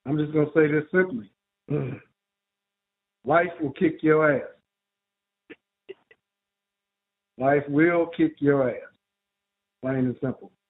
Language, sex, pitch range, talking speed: English, male, 135-185 Hz, 110 wpm